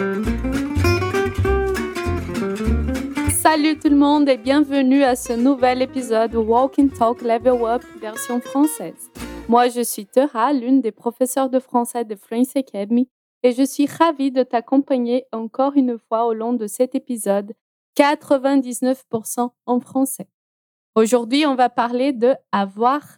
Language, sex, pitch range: Portuguese, female, 230-270 Hz